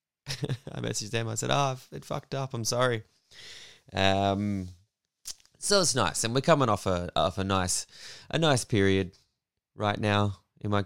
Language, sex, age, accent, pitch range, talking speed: English, male, 20-39, Australian, 85-110 Hz, 170 wpm